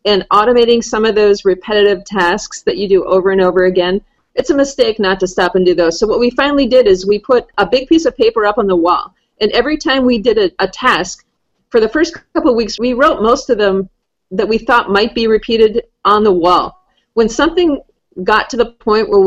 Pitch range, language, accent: 185-230 Hz, English, American